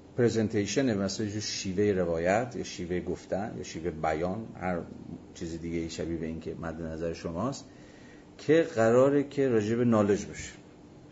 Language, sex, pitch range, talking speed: Persian, male, 90-110 Hz, 150 wpm